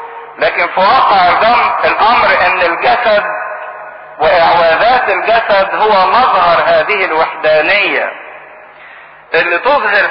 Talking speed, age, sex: 85 wpm, 50-69, male